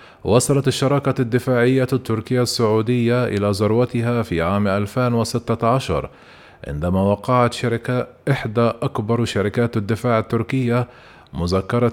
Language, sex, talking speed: Arabic, male, 95 wpm